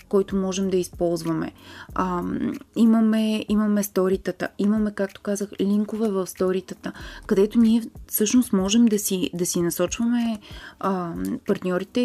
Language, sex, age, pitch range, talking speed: Bulgarian, female, 20-39, 190-220 Hz, 125 wpm